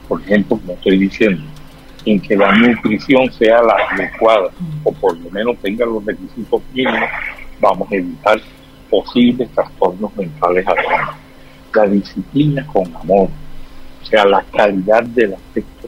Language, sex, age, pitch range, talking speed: Spanish, male, 60-79, 100-130 Hz, 140 wpm